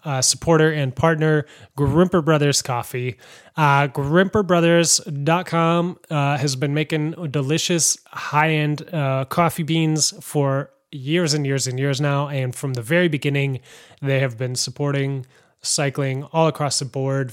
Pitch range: 135-170 Hz